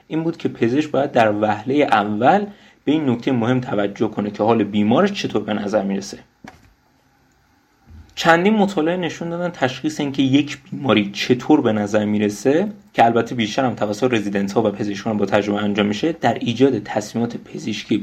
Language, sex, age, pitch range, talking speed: Persian, male, 30-49, 105-150 Hz, 165 wpm